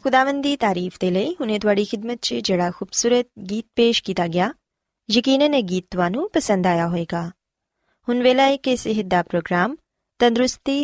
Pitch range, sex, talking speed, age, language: 180-260 Hz, female, 140 wpm, 20-39, Punjabi